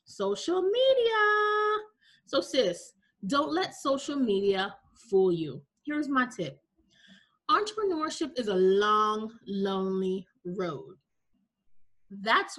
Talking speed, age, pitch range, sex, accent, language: 95 wpm, 30-49, 210-285 Hz, female, American, English